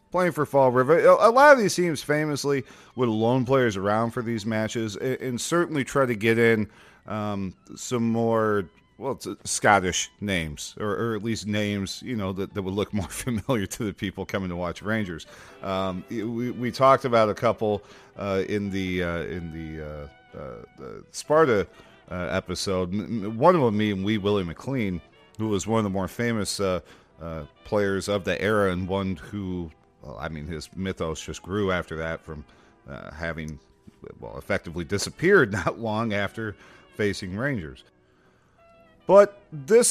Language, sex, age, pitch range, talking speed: English, male, 40-59, 90-115 Hz, 170 wpm